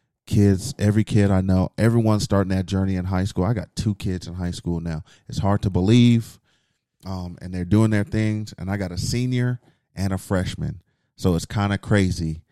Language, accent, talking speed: English, American, 200 wpm